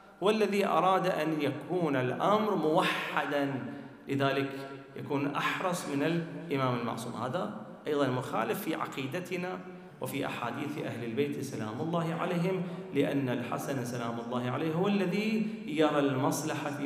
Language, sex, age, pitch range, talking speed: Arabic, male, 40-59, 140-195 Hz, 115 wpm